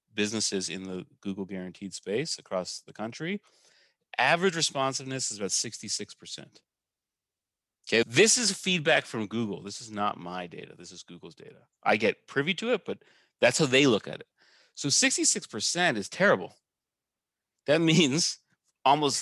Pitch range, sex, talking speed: 110-160 Hz, male, 150 wpm